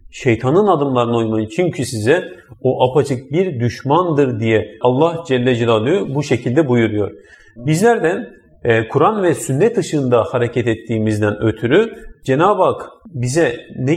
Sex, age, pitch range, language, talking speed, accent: male, 40-59, 125-180 Hz, Turkish, 120 wpm, native